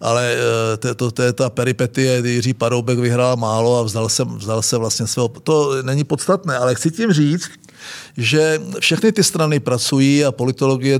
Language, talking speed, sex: Czech, 175 wpm, male